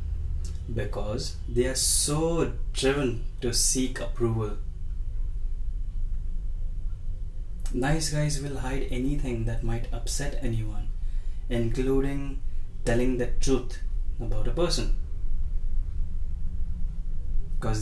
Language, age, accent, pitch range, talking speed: Hindi, 20-39, native, 100-130 Hz, 85 wpm